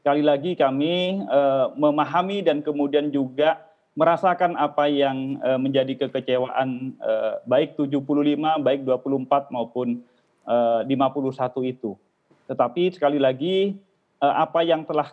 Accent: Indonesian